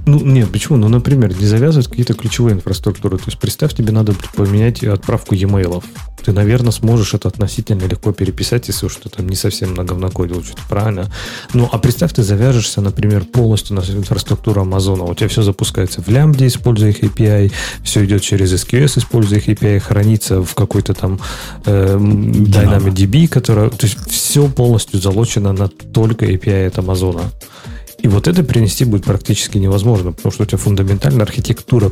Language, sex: Russian, male